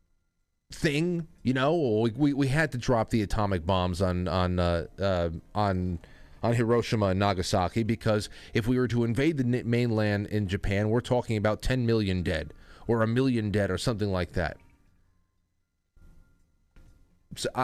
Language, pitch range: English, 90-135 Hz